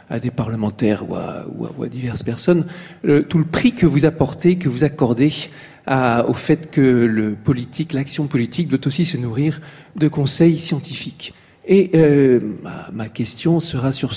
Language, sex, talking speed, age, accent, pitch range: French, male, 180 wpm, 40-59, French, 125-165 Hz